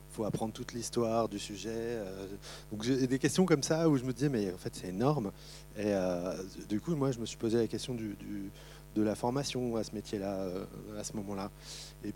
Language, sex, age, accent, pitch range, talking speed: French, male, 30-49, French, 100-120 Hz, 225 wpm